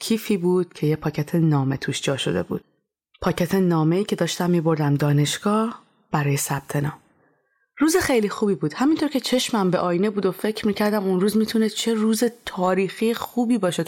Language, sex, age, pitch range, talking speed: Persian, female, 30-49, 165-220 Hz, 175 wpm